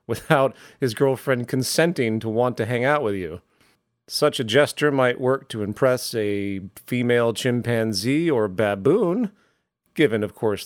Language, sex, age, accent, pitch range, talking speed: English, male, 40-59, American, 105-135 Hz, 145 wpm